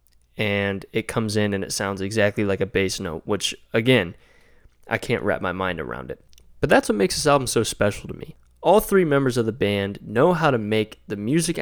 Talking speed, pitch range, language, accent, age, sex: 220 wpm, 100-130 Hz, English, American, 20-39, male